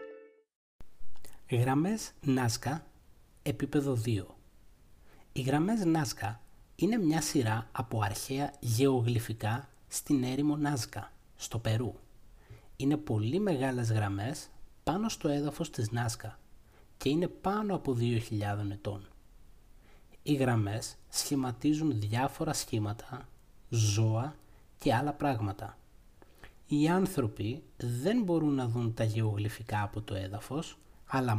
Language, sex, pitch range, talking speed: Greek, male, 110-150 Hz, 105 wpm